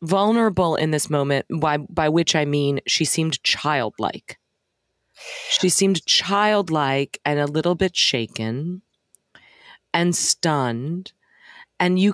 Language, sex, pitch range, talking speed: English, female, 140-175 Hz, 120 wpm